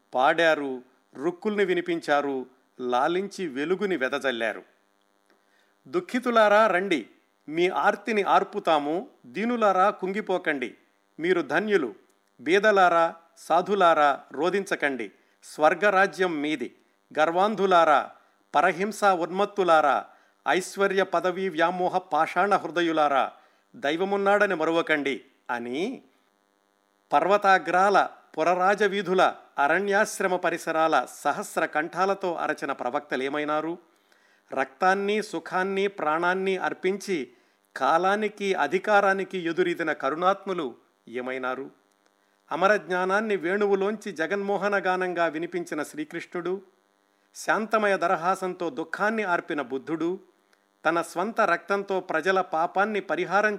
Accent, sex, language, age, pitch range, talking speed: native, male, Telugu, 50-69, 145-195 Hz, 75 wpm